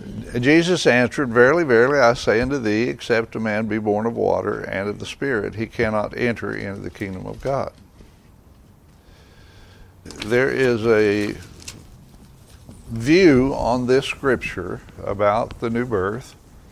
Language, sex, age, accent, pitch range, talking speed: English, male, 60-79, American, 100-120 Hz, 135 wpm